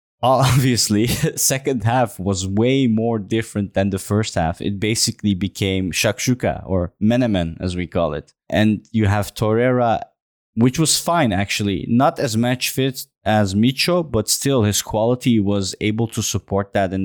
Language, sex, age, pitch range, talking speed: English, male, 20-39, 95-120 Hz, 160 wpm